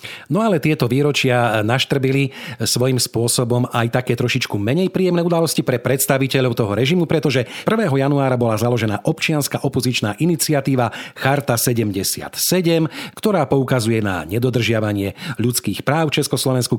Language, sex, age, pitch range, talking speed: Slovak, male, 40-59, 115-140 Hz, 125 wpm